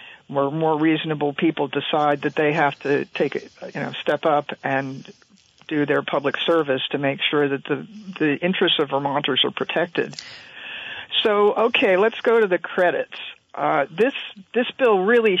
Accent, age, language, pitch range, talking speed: American, 50-69, English, 145-190 Hz, 170 wpm